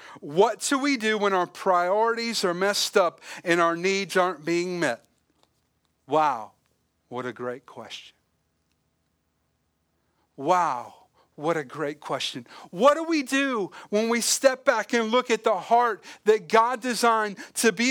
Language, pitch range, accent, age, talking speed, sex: English, 150-235 Hz, American, 40-59, 145 wpm, male